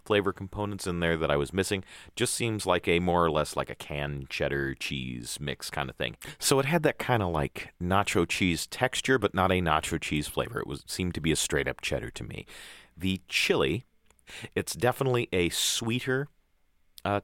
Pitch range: 80-115 Hz